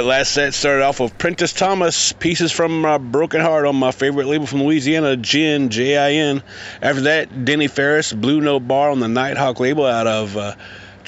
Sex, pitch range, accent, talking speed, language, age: male, 115-145 Hz, American, 195 wpm, English, 30-49